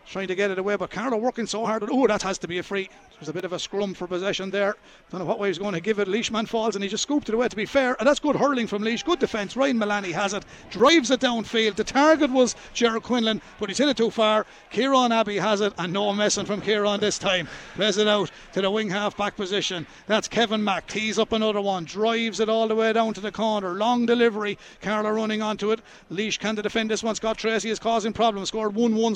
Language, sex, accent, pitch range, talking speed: English, male, Irish, 205-230 Hz, 255 wpm